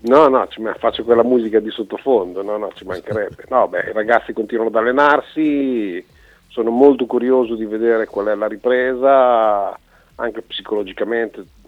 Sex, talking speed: male, 150 wpm